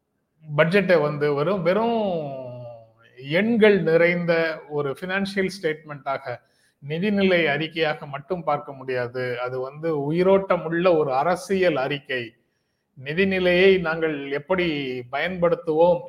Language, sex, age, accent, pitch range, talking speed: Tamil, male, 30-49, native, 140-185 Hz, 90 wpm